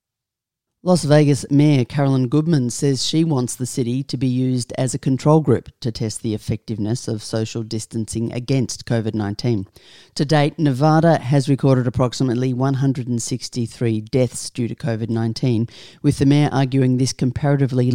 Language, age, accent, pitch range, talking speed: English, 40-59, Australian, 115-135 Hz, 145 wpm